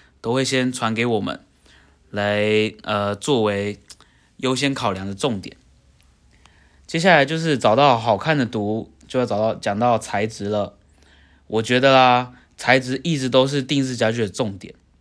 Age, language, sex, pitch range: 20-39, Chinese, male, 95-130 Hz